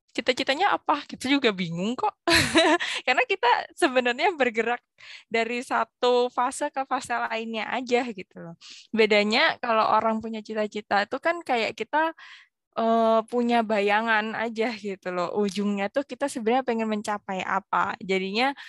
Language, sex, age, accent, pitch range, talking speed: Indonesian, female, 20-39, native, 200-245 Hz, 135 wpm